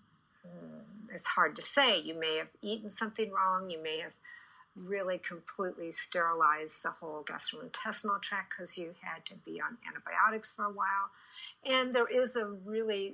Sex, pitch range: female, 170-230 Hz